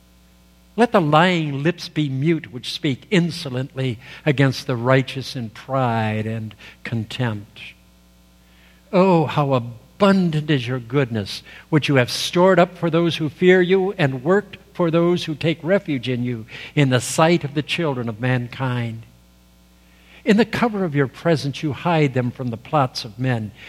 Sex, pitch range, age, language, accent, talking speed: male, 105-155 Hz, 60-79, English, American, 160 wpm